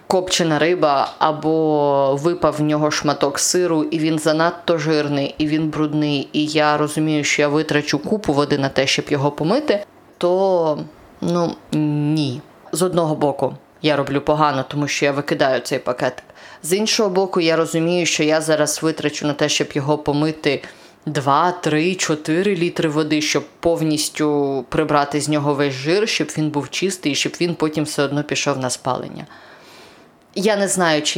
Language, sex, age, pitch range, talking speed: Ukrainian, female, 20-39, 150-175 Hz, 165 wpm